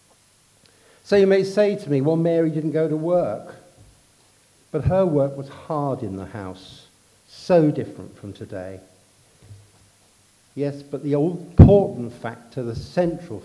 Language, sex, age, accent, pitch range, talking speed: English, male, 50-69, British, 105-145 Hz, 140 wpm